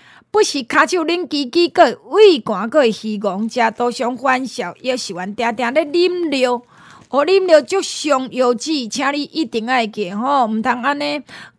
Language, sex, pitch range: Chinese, female, 225-300 Hz